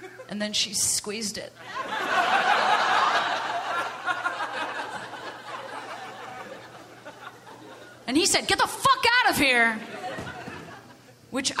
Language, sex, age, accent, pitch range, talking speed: English, female, 30-49, American, 215-350 Hz, 80 wpm